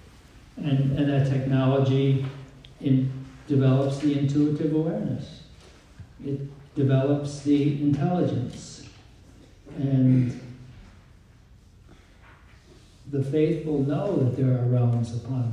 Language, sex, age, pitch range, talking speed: English, male, 60-79, 125-150 Hz, 80 wpm